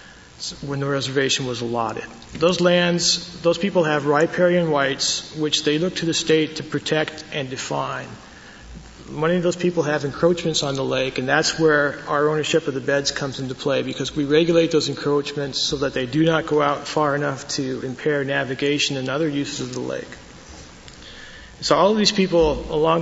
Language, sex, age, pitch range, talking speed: English, male, 40-59, 140-160 Hz, 185 wpm